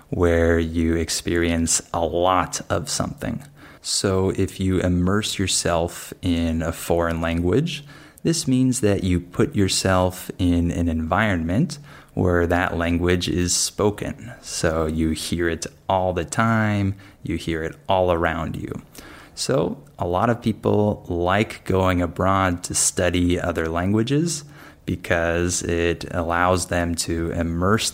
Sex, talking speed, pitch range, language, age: male, 130 wpm, 85-95 Hz, Spanish, 20-39